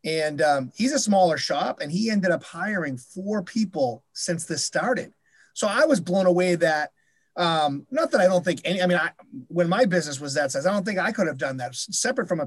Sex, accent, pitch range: male, American, 155-190 Hz